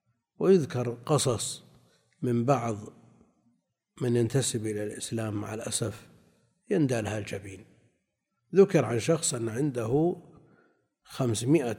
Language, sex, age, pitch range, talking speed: Arabic, male, 60-79, 115-150 Hz, 85 wpm